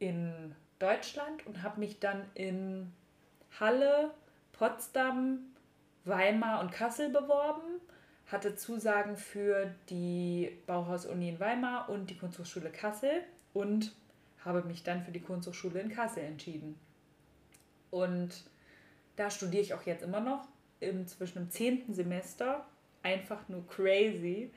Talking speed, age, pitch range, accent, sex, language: 120 wpm, 20-39, 175-210 Hz, German, female, German